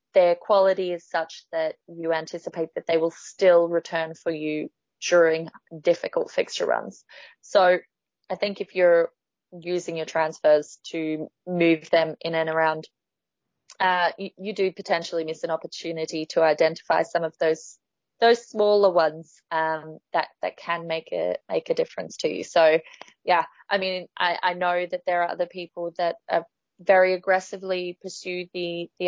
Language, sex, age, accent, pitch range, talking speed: English, female, 20-39, Australian, 165-200 Hz, 160 wpm